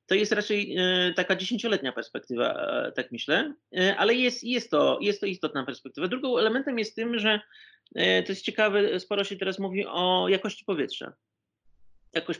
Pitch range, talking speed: 145-190 Hz, 155 wpm